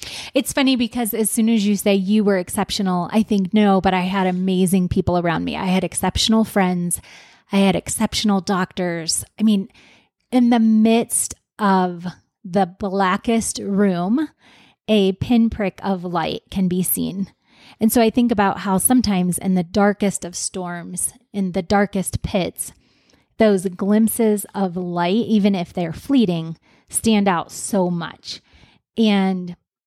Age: 20-39